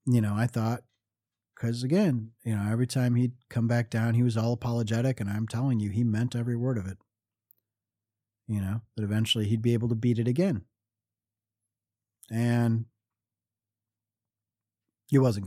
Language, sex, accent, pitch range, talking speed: English, male, American, 105-120 Hz, 165 wpm